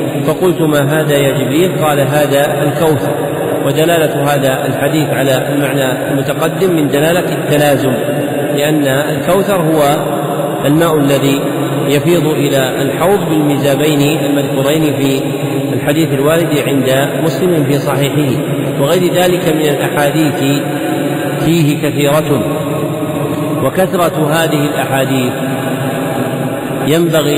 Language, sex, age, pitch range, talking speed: Arabic, male, 40-59, 145-160 Hz, 95 wpm